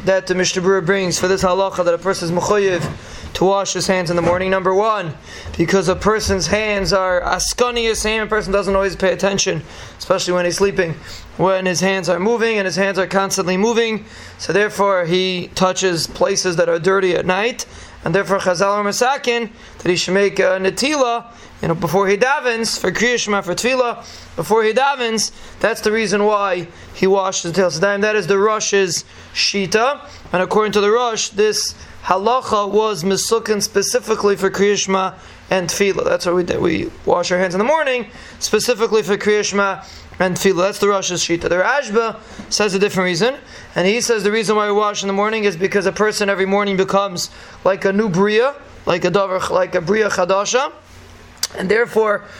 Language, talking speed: English, 190 wpm